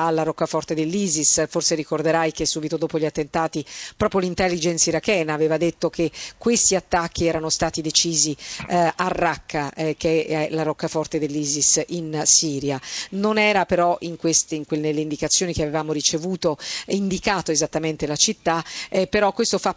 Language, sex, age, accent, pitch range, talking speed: Italian, female, 50-69, native, 155-185 Hz, 145 wpm